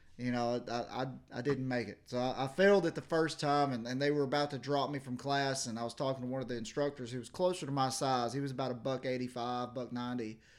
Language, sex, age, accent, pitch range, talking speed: English, male, 30-49, American, 125-145 Hz, 280 wpm